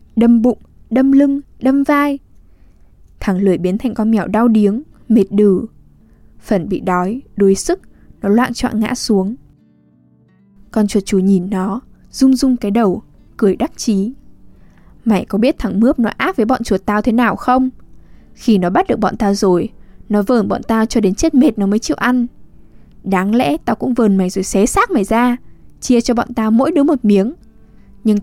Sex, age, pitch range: female, 10-29, 200-250 Hz